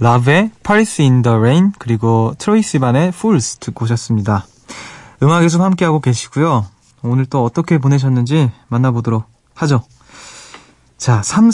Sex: male